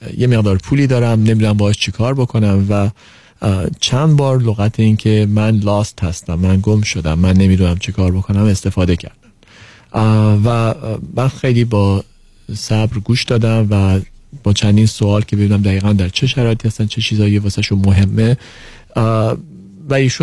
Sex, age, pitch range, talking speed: male, 40-59, 100-115 Hz, 145 wpm